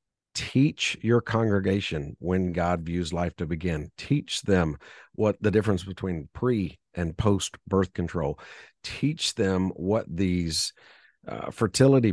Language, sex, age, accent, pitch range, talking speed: English, male, 50-69, American, 90-120 Hz, 130 wpm